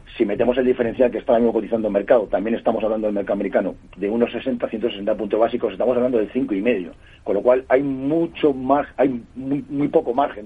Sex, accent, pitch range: male, Spanish, 105-130 Hz